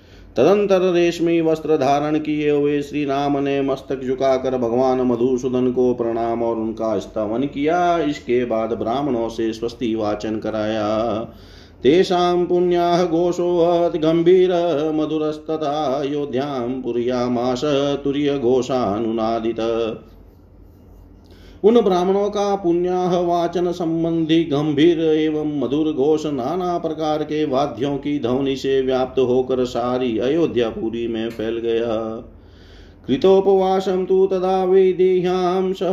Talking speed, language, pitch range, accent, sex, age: 100 wpm, Hindi, 120-160 Hz, native, male, 40-59